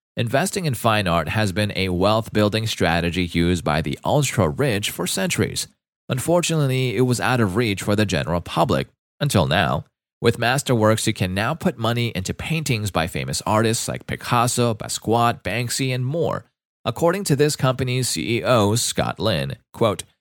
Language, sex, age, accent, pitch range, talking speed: English, male, 30-49, American, 95-130 Hz, 155 wpm